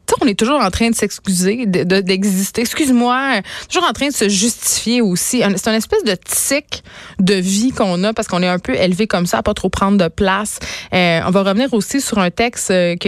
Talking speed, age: 230 wpm, 20-39